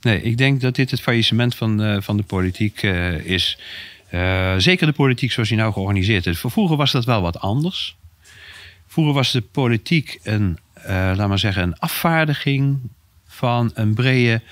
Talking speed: 180 wpm